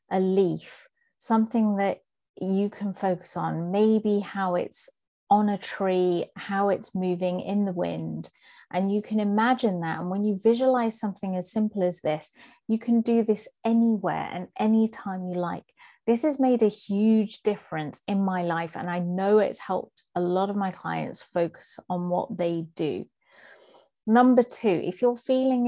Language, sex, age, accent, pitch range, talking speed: English, female, 30-49, British, 175-220 Hz, 170 wpm